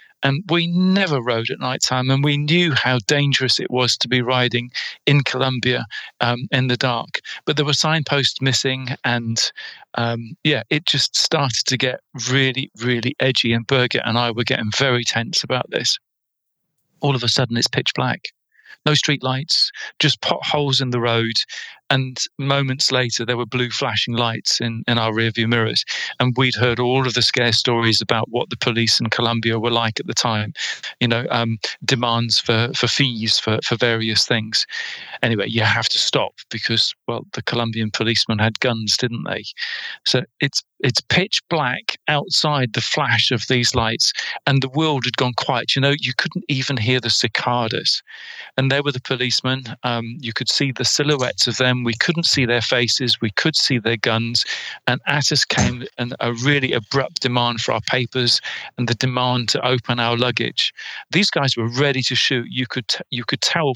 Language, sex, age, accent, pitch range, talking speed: English, male, 40-59, British, 120-140 Hz, 185 wpm